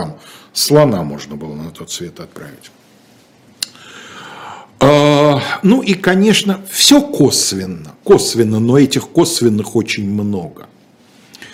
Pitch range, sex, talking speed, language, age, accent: 115-165 Hz, male, 100 wpm, Russian, 50-69, native